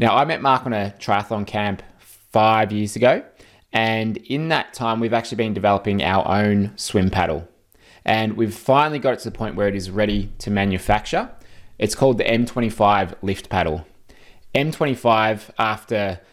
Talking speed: 165 wpm